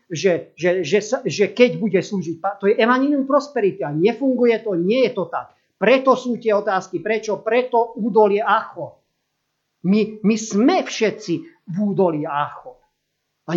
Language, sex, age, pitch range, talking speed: Slovak, male, 50-69, 145-215 Hz, 155 wpm